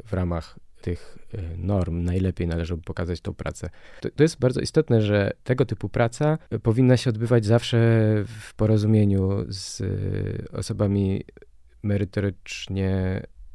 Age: 20-39